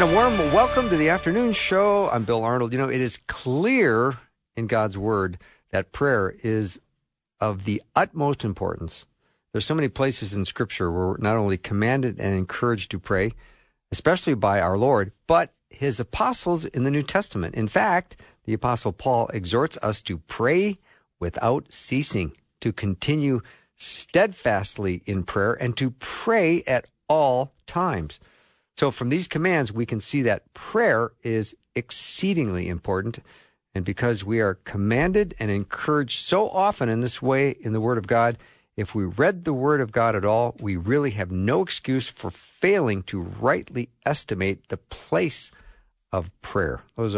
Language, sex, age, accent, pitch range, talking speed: English, male, 50-69, American, 100-135 Hz, 160 wpm